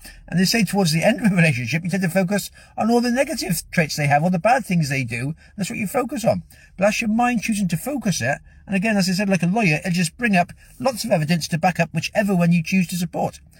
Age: 50-69